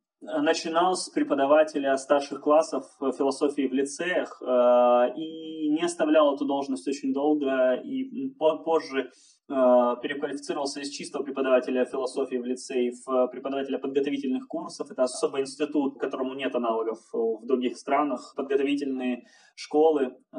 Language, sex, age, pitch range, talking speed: Russian, male, 20-39, 130-165 Hz, 115 wpm